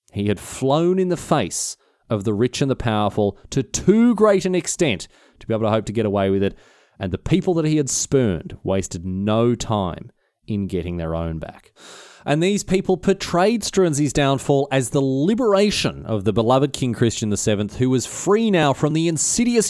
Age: 30-49